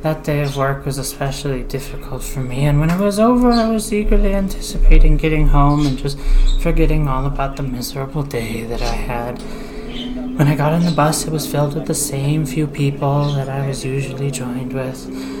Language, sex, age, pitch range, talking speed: English, male, 30-49, 135-155 Hz, 200 wpm